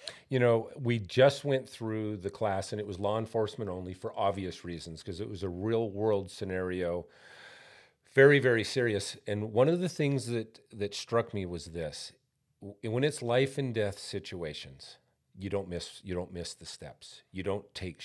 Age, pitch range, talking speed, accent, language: 40-59, 90-120 Hz, 175 wpm, American, English